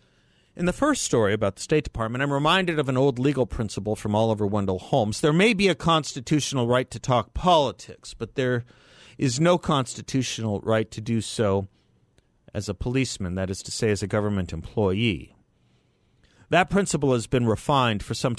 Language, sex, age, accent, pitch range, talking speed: English, male, 50-69, American, 105-145 Hz, 180 wpm